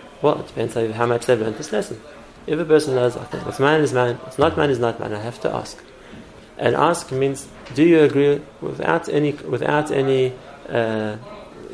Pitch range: 120-155 Hz